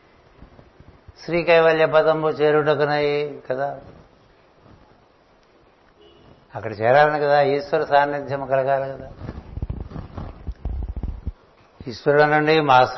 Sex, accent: male, native